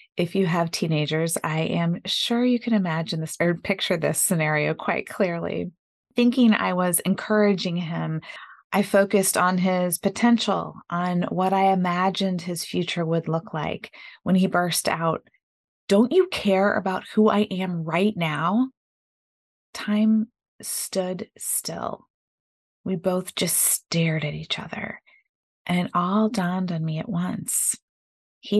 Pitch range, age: 165-205 Hz, 30-49